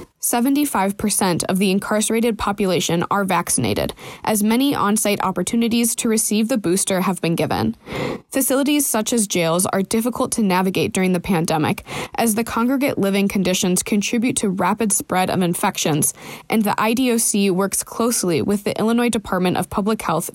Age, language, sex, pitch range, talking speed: 20-39, English, female, 185-230 Hz, 150 wpm